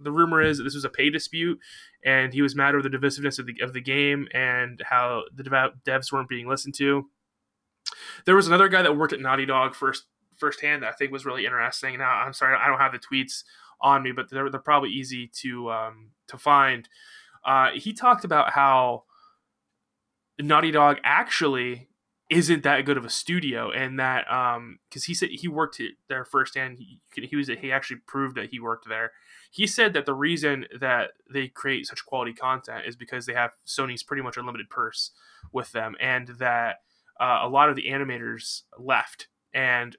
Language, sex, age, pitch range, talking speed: English, male, 20-39, 125-145 Hz, 200 wpm